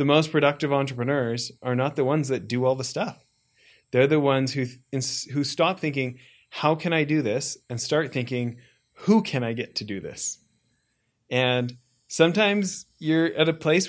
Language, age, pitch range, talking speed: English, 30-49, 130-170 Hz, 175 wpm